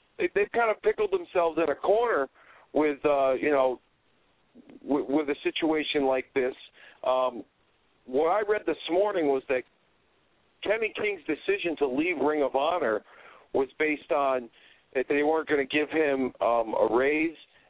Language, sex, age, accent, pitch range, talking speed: English, male, 50-69, American, 125-170 Hz, 160 wpm